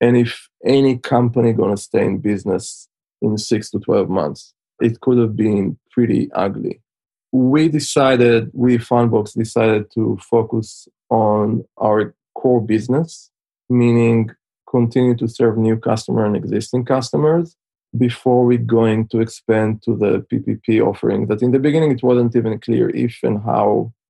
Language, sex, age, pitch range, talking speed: English, male, 20-39, 110-125 Hz, 150 wpm